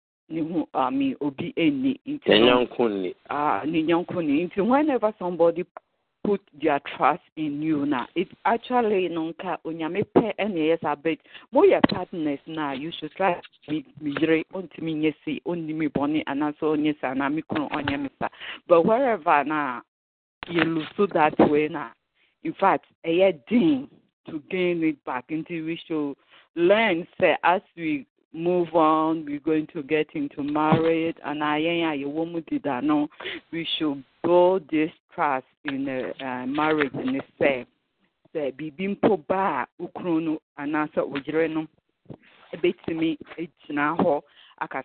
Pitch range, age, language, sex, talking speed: 150-195 Hz, 50-69, English, female, 145 wpm